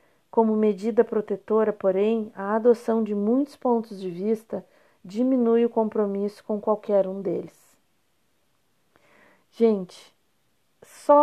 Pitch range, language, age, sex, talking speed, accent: 200-235 Hz, Portuguese, 40-59, female, 105 wpm, Brazilian